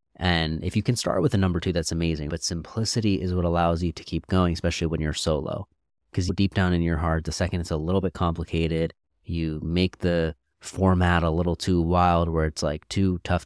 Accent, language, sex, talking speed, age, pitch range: American, English, male, 225 wpm, 30-49, 80-95 Hz